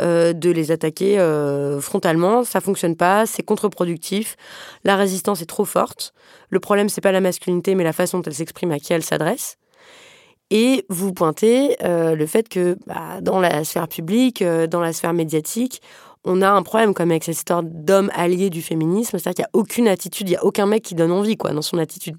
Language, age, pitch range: French, 20-39, 170-200 Hz